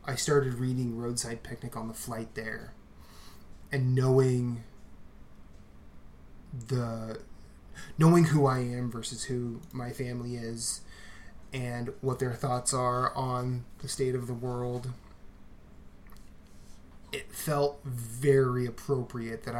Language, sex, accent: English, male, American